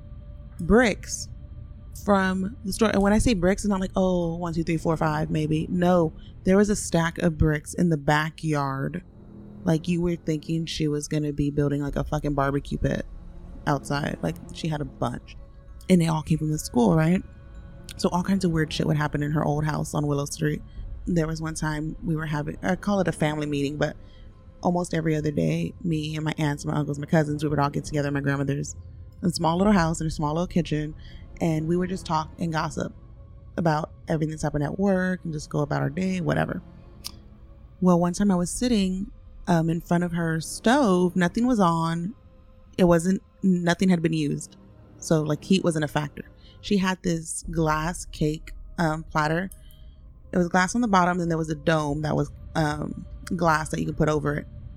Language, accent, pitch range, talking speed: English, American, 150-180 Hz, 205 wpm